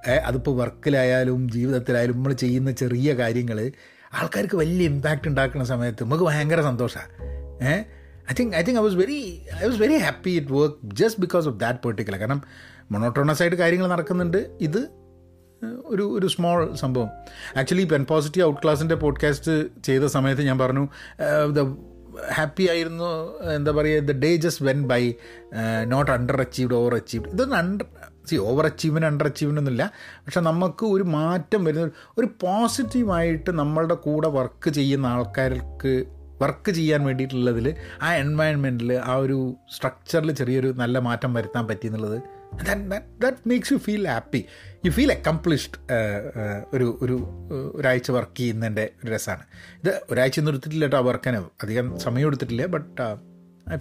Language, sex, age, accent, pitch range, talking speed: Malayalam, male, 30-49, native, 120-160 Hz, 145 wpm